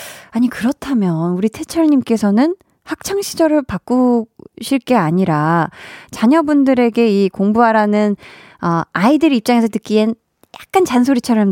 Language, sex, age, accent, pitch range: Korean, female, 20-39, native, 185-270 Hz